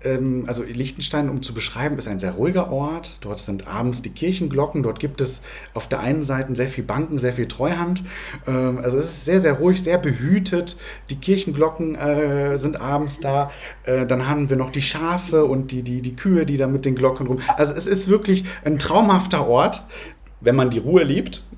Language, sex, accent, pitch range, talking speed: German, male, German, 130-175 Hz, 195 wpm